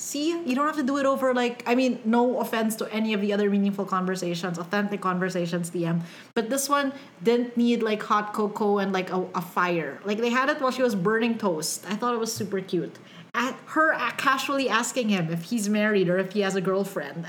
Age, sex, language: 30-49, female, English